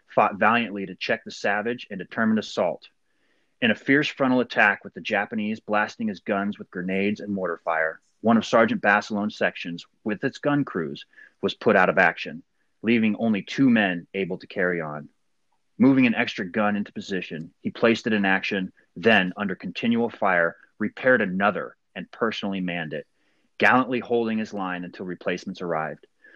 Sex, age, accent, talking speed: male, 30-49, American, 170 wpm